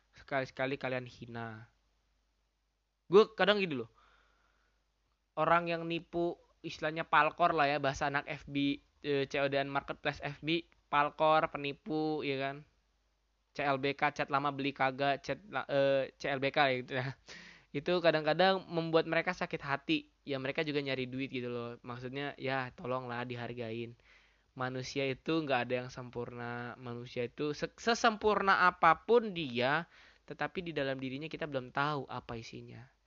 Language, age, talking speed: Indonesian, 20-39, 130 wpm